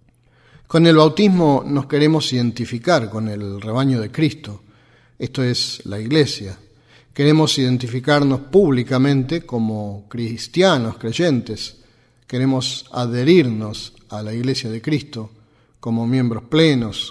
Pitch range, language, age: 115-145 Hz, Spanish, 40-59